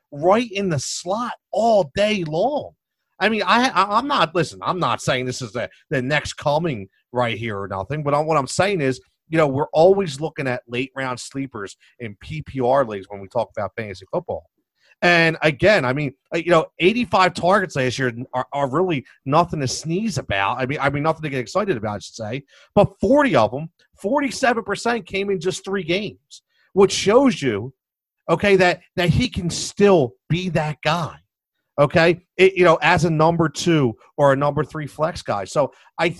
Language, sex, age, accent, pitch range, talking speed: English, male, 40-59, American, 130-180 Hz, 195 wpm